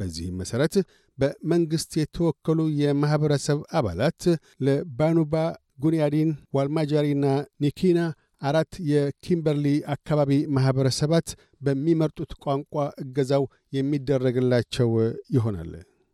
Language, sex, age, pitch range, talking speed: Amharic, male, 50-69, 135-160 Hz, 70 wpm